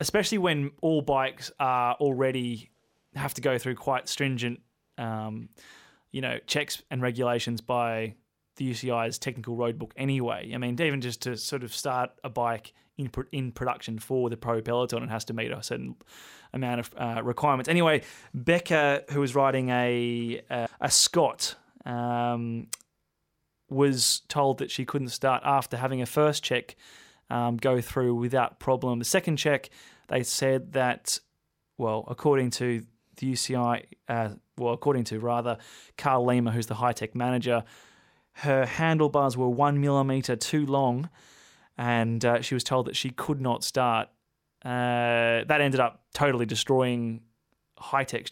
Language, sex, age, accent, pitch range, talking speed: English, male, 20-39, Australian, 120-135 Hz, 155 wpm